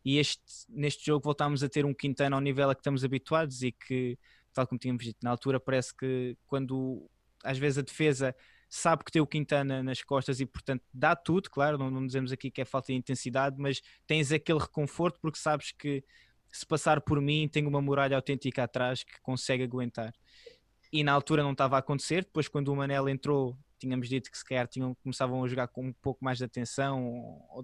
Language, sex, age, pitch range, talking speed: Portuguese, male, 20-39, 130-150 Hz, 210 wpm